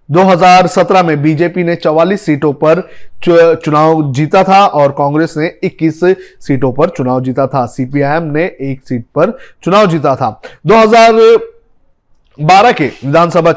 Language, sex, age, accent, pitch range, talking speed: Hindi, male, 30-49, native, 145-185 Hz, 140 wpm